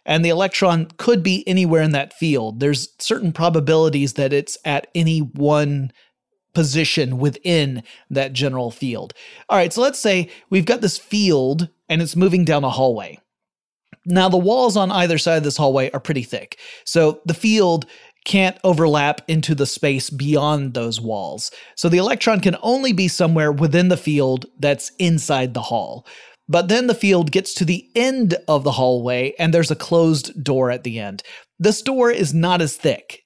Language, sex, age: English, male, 30-49